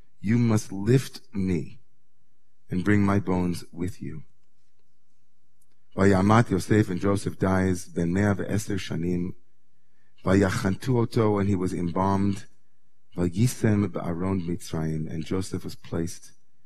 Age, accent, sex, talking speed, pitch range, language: 40-59, American, male, 120 wpm, 100-125 Hz, English